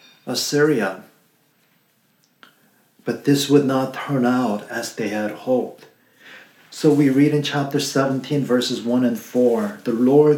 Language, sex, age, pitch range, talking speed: English, male, 50-69, 120-150 Hz, 135 wpm